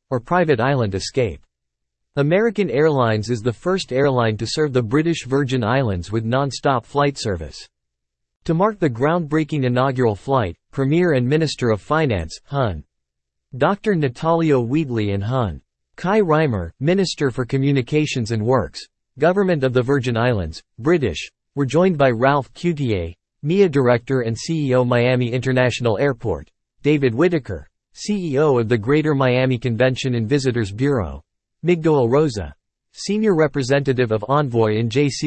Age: 50-69